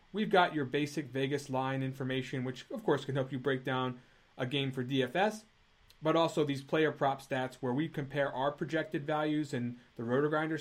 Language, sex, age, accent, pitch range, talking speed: English, male, 30-49, American, 120-150 Hz, 200 wpm